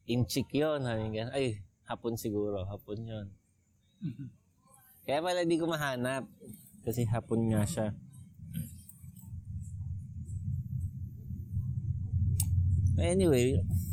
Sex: male